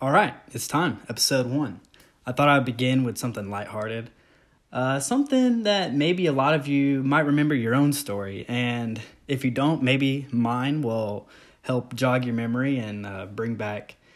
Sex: male